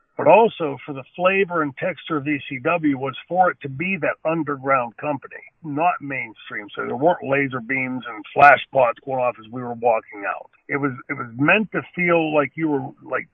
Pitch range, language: 140-160 Hz, English